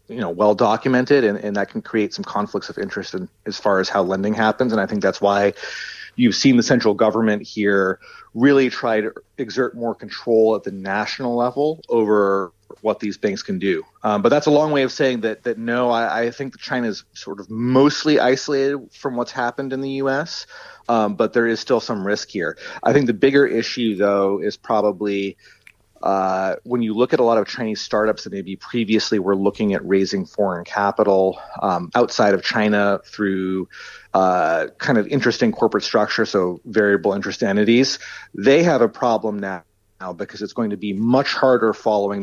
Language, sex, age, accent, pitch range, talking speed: English, male, 30-49, American, 100-125 Hz, 195 wpm